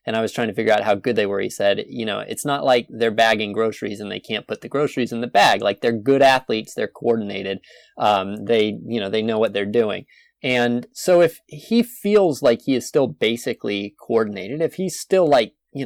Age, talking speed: 20-39, 230 wpm